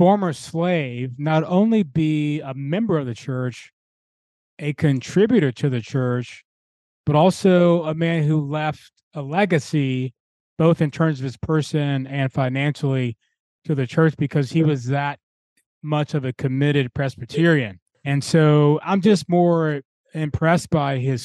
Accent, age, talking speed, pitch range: American, 30-49, 145 wpm, 135-165 Hz